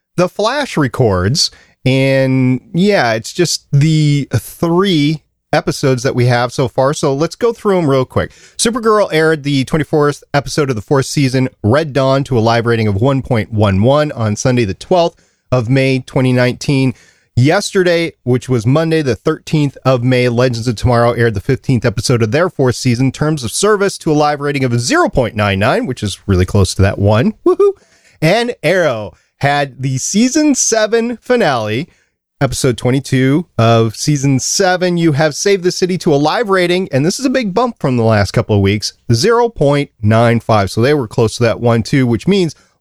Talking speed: 180 wpm